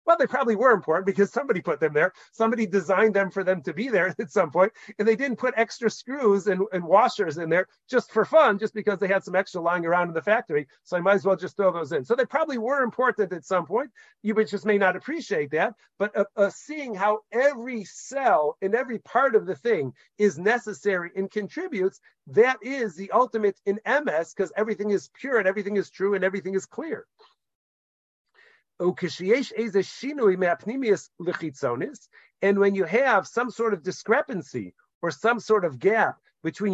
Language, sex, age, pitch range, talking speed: English, male, 40-59, 190-235 Hz, 195 wpm